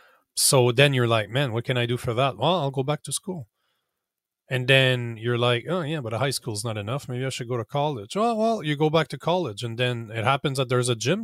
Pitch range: 115-140 Hz